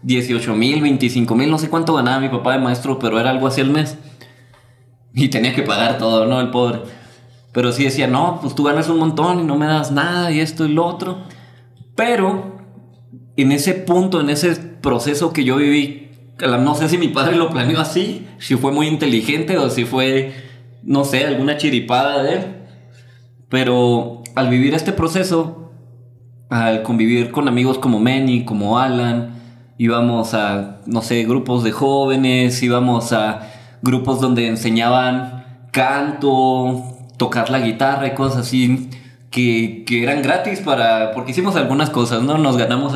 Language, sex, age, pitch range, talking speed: Spanish, male, 20-39, 120-150 Hz, 170 wpm